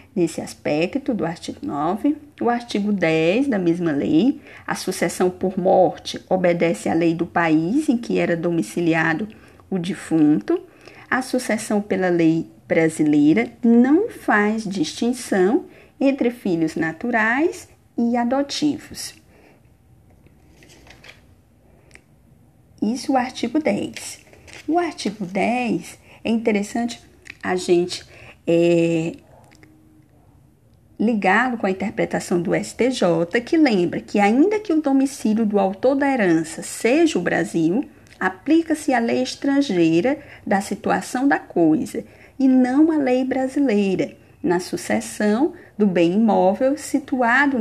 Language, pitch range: Portuguese, 175-275 Hz